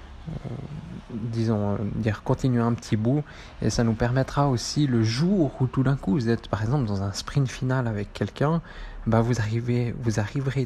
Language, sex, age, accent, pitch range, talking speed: French, male, 20-39, French, 110-130 Hz, 190 wpm